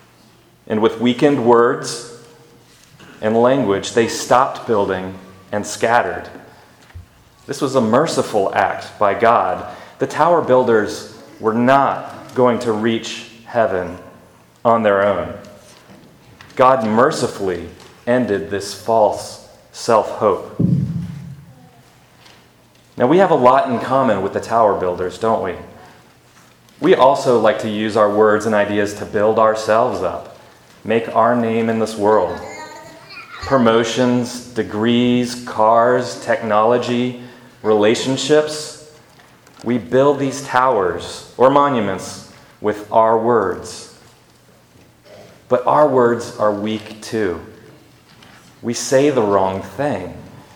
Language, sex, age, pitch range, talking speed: English, male, 40-59, 105-125 Hz, 110 wpm